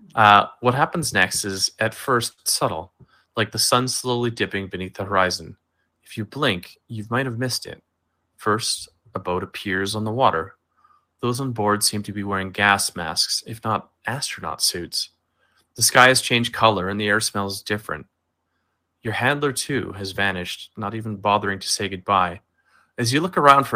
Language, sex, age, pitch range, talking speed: English, male, 30-49, 95-115 Hz, 175 wpm